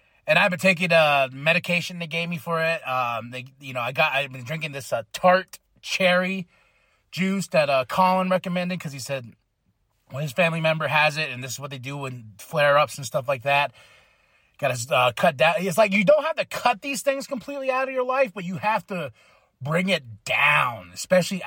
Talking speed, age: 220 wpm, 30-49